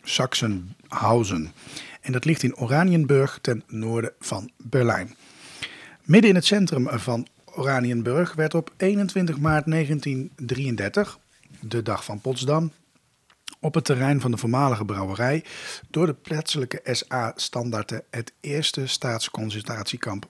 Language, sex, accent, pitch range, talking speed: Dutch, male, Dutch, 115-155 Hz, 115 wpm